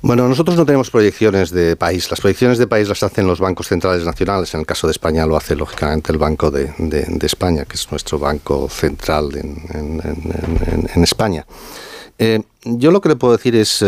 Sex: male